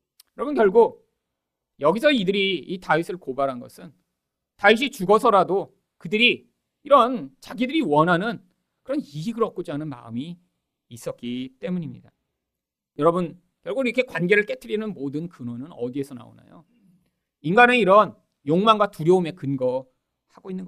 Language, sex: Korean, male